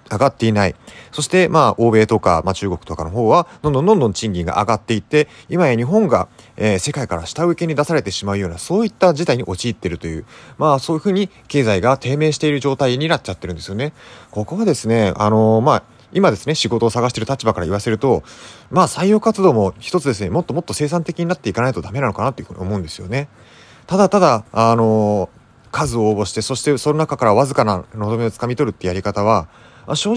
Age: 30-49